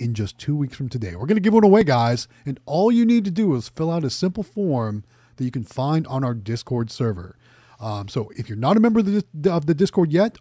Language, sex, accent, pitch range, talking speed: English, male, American, 120-180 Hz, 265 wpm